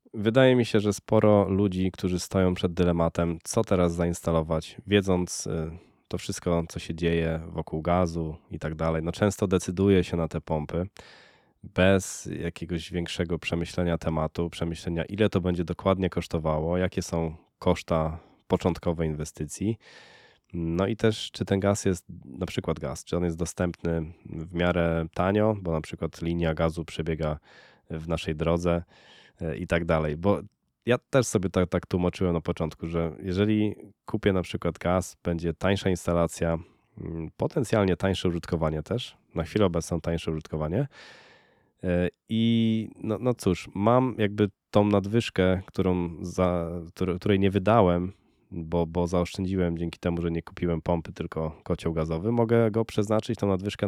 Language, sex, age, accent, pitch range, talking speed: Polish, male, 20-39, native, 85-100 Hz, 145 wpm